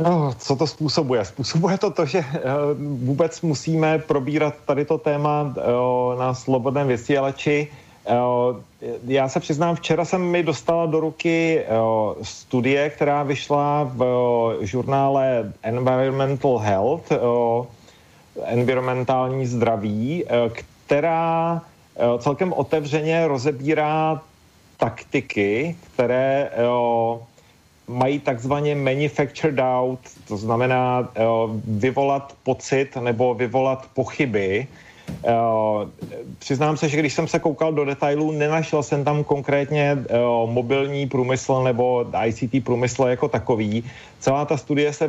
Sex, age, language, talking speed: male, 40-59, Slovak, 100 wpm